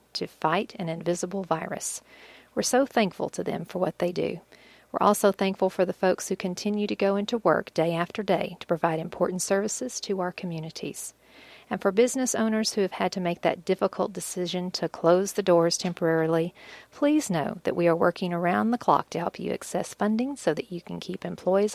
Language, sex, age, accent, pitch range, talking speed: English, female, 40-59, American, 170-205 Hz, 200 wpm